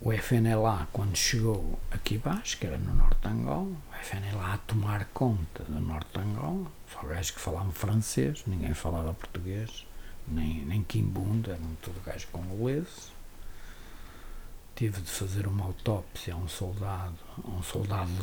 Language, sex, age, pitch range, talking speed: Portuguese, male, 60-79, 90-115 Hz, 165 wpm